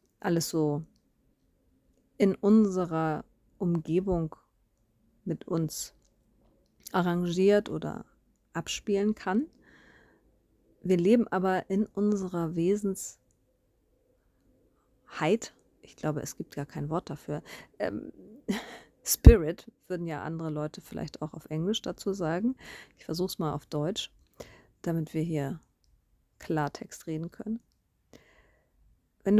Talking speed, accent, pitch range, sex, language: 100 wpm, German, 160-195 Hz, female, German